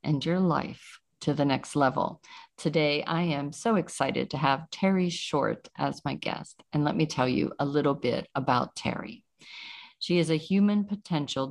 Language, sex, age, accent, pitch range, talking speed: English, female, 50-69, American, 140-180 Hz, 175 wpm